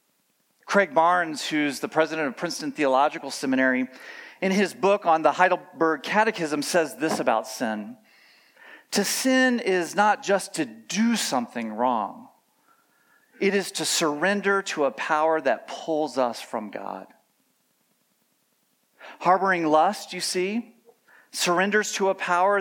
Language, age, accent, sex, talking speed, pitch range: English, 40-59, American, male, 130 wpm, 155-205 Hz